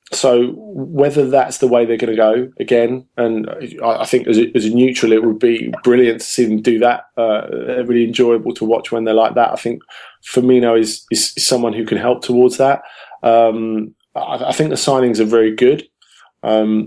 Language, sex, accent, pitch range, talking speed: English, male, British, 110-125 Hz, 205 wpm